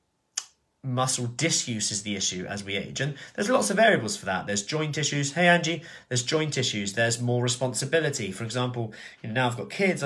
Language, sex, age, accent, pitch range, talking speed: English, male, 30-49, British, 105-140 Hz, 235 wpm